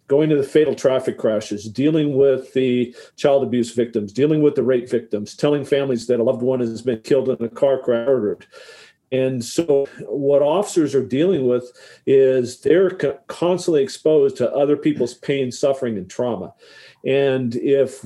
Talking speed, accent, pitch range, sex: 165 wpm, American, 125-145 Hz, male